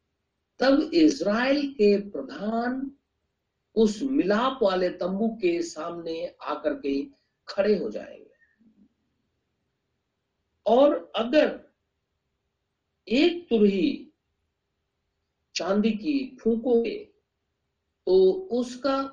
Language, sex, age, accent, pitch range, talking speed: Hindi, male, 60-79, native, 175-275 Hz, 75 wpm